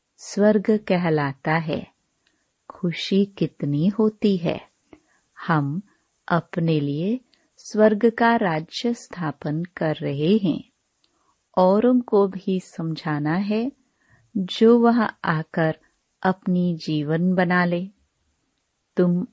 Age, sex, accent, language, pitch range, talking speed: 30-49, female, native, Hindi, 160-220 Hz, 95 wpm